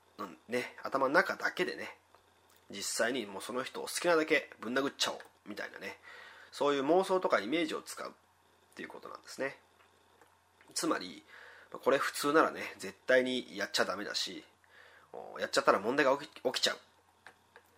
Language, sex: Japanese, male